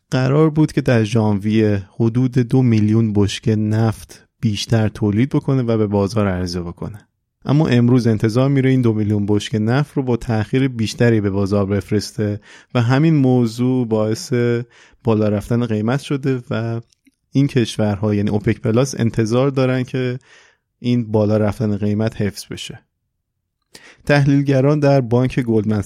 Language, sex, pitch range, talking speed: Persian, male, 105-125 Hz, 140 wpm